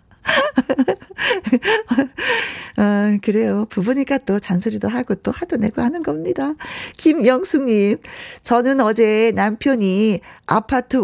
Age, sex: 40-59, female